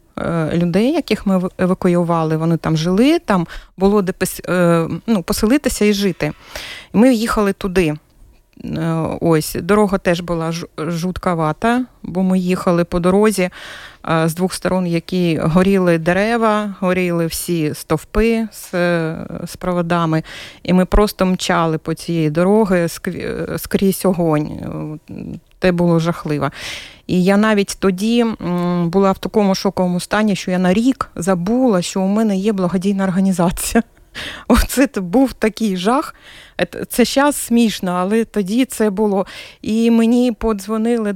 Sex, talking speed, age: female, 120 wpm, 30-49